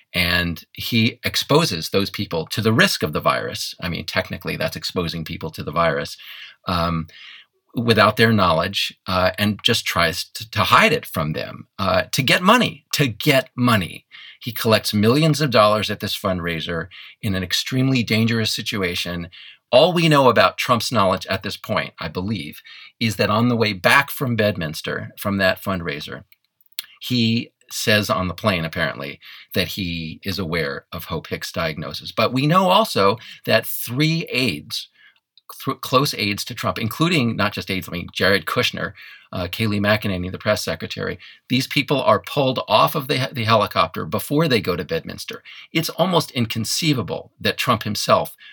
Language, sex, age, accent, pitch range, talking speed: English, male, 40-59, American, 95-125 Hz, 170 wpm